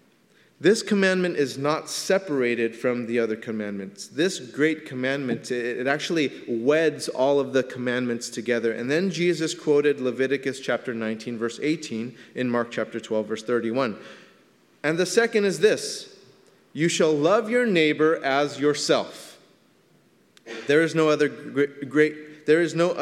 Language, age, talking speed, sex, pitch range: English, 30-49, 135 wpm, male, 125-155 Hz